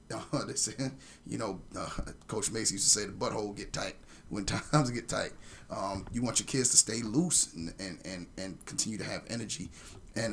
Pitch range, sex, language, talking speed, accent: 95-120 Hz, male, English, 205 wpm, American